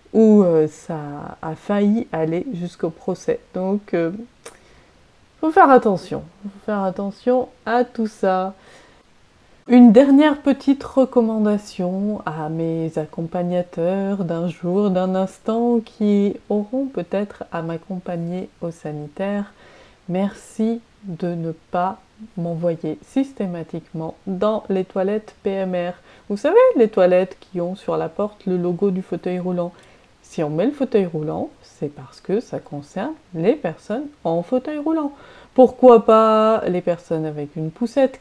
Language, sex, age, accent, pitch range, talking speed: French, female, 30-49, French, 170-225 Hz, 135 wpm